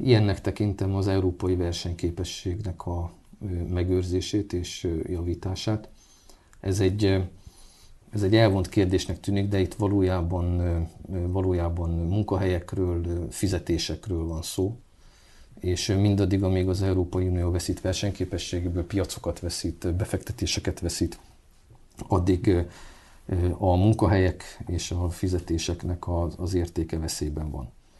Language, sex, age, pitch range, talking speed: Hungarian, male, 40-59, 85-95 Hz, 95 wpm